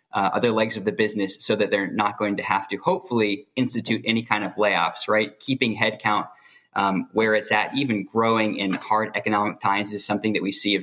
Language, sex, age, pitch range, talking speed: English, male, 20-39, 100-115 Hz, 215 wpm